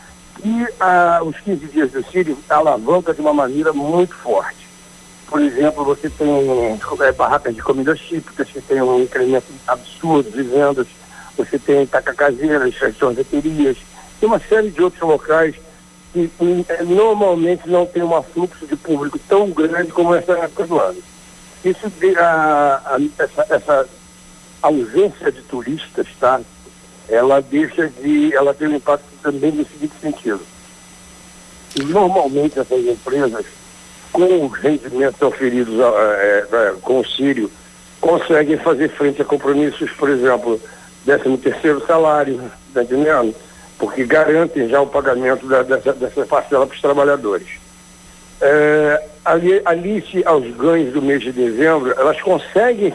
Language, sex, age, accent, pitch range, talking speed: Portuguese, male, 60-79, Brazilian, 130-170 Hz, 140 wpm